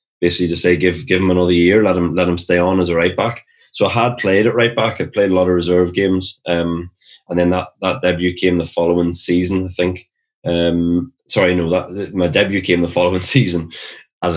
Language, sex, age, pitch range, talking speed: English, male, 20-39, 85-90 Hz, 235 wpm